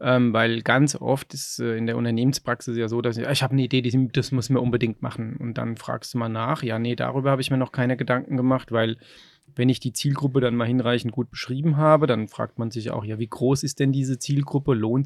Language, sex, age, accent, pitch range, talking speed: German, male, 30-49, German, 125-145 Hz, 245 wpm